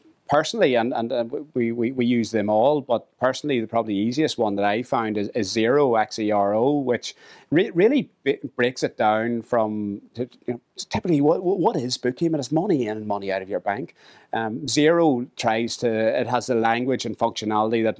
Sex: male